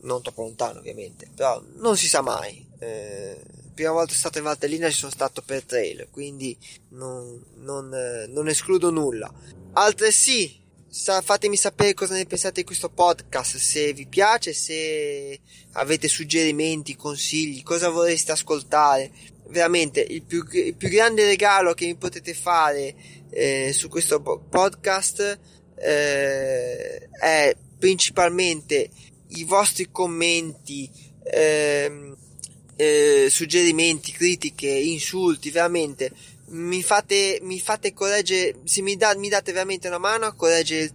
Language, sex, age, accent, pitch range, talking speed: Italian, male, 20-39, native, 150-200 Hz, 135 wpm